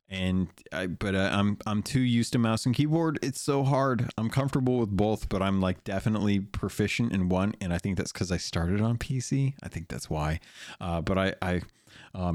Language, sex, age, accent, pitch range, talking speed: English, male, 30-49, American, 90-110 Hz, 210 wpm